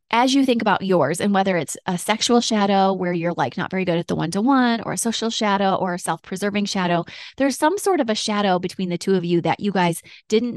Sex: female